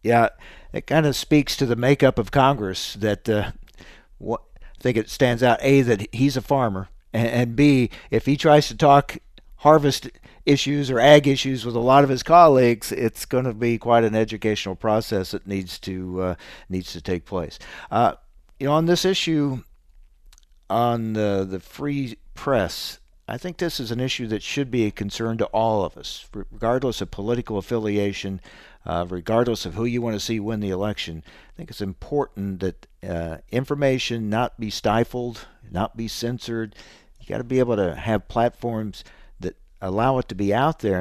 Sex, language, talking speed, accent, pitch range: male, English, 185 wpm, American, 100-130 Hz